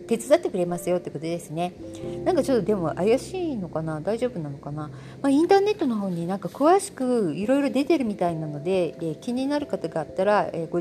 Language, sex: Japanese, female